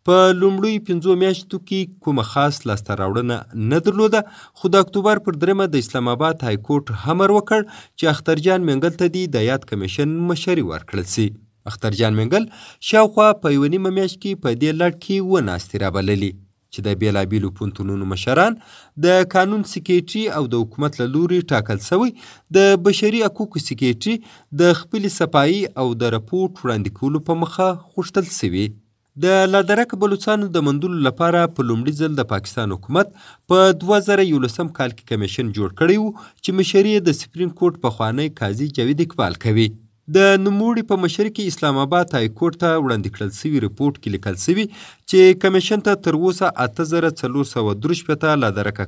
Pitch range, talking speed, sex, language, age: 115-190 Hz, 155 wpm, male, Urdu, 30-49